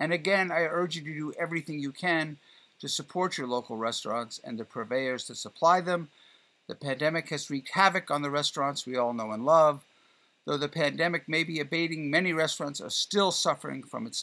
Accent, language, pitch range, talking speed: American, English, 130-175 Hz, 200 wpm